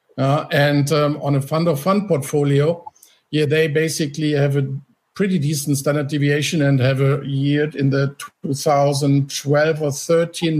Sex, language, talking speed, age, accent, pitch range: male, German, 155 wpm, 50-69, German, 140-170 Hz